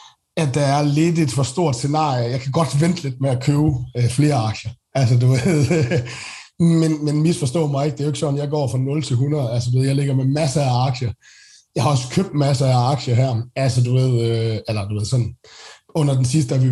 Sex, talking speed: male, 250 wpm